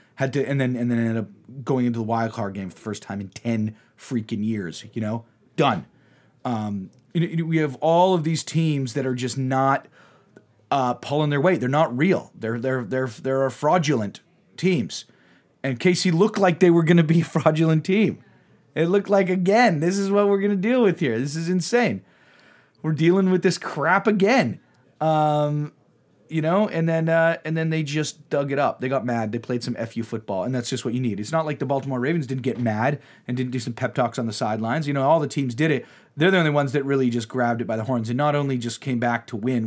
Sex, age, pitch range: male, 30-49, 115-160 Hz